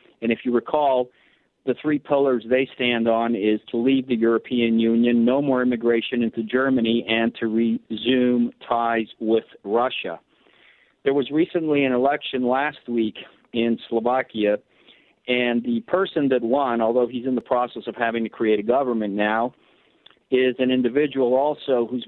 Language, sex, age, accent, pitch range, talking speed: English, male, 50-69, American, 115-130 Hz, 160 wpm